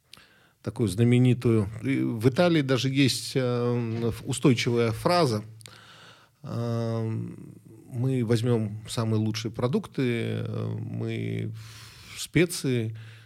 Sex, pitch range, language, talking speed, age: male, 110-125 Hz, Russian, 80 wpm, 40-59